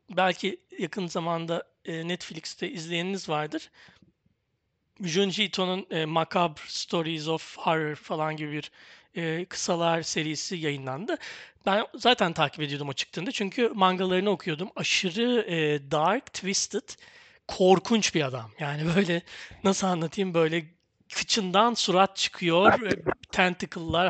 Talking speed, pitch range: 105 wpm, 160-210 Hz